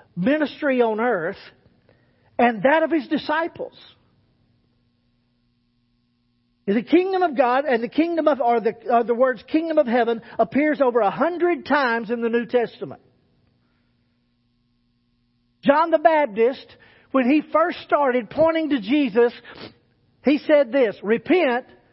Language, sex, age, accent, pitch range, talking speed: English, male, 50-69, American, 200-285 Hz, 130 wpm